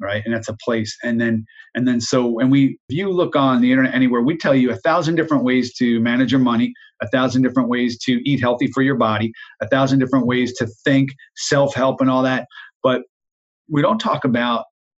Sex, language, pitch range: male, English, 115-135 Hz